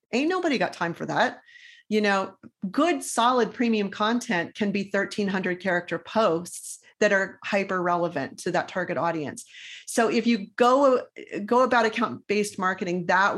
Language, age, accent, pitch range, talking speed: English, 40-59, American, 190-230 Hz, 155 wpm